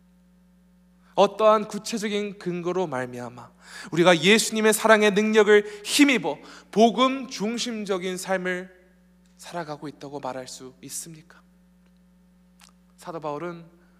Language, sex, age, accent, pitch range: Korean, male, 20-39, native, 155-185 Hz